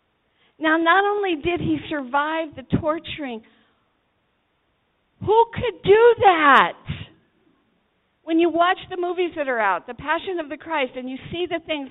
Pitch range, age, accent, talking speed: 260-380 Hz, 50-69, American, 150 wpm